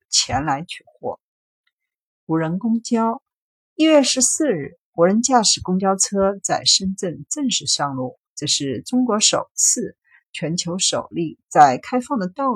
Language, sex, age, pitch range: Chinese, female, 50-69, 165-255 Hz